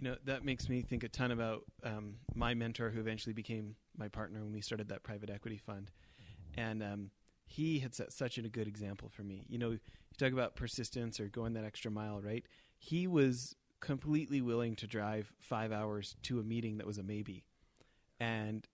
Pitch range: 110-125 Hz